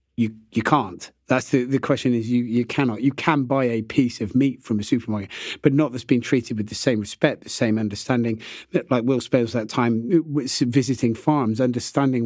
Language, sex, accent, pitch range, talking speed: English, male, British, 115-145 Hz, 200 wpm